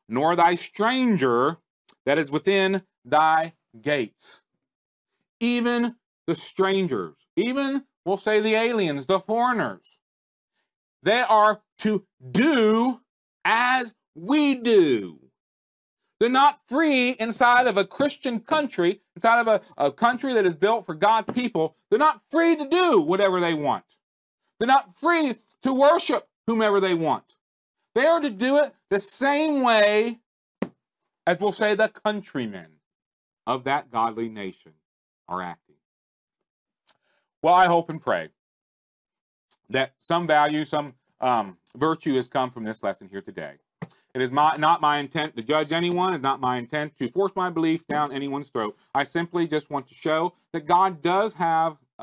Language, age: English, 40-59